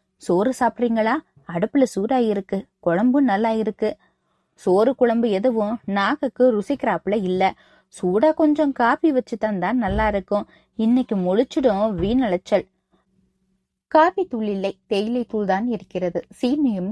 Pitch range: 190-255 Hz